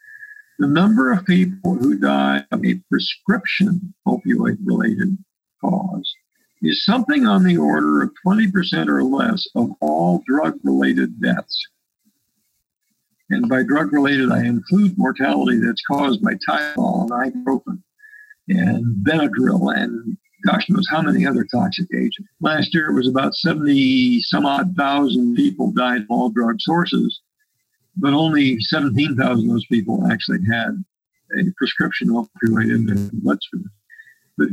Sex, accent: male, American